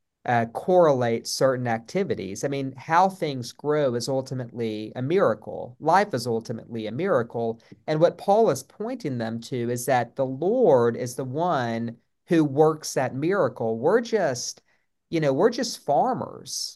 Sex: male